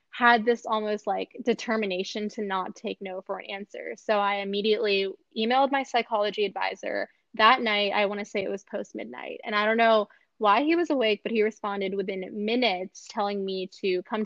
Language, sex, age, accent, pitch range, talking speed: English, female, 10-29, American, 195-230 Hz, 195 wpm